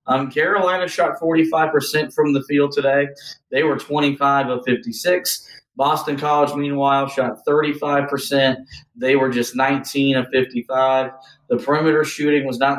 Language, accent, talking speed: English, American, 135 wpm